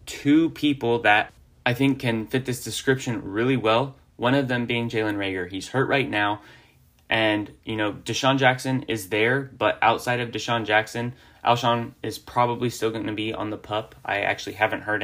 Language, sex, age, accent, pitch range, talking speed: English, male, 10-29, American, 105-135 Hz, 190 wpm